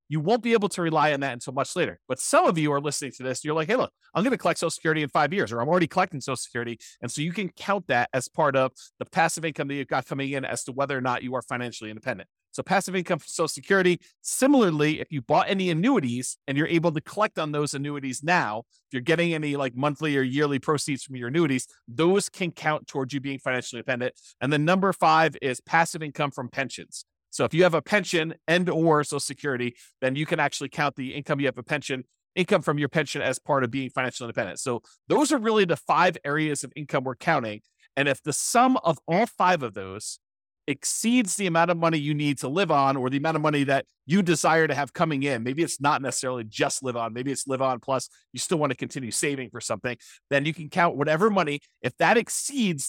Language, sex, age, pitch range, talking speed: English, male, 30-49, 130-170 Hz, 245 wpm